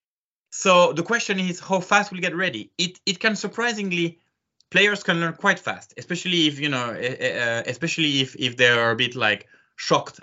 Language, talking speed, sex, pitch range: English, 190 wpm, male, 115-170 Hz